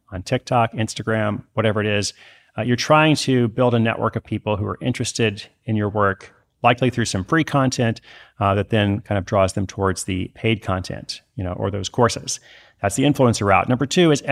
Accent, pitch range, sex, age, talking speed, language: American, 100-125 Hz, male, 30-49, 205 wpm, English